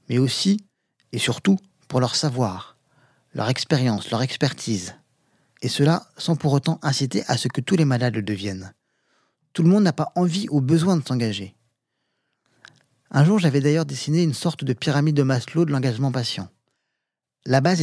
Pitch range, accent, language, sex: 125-165 Hz, French, French, male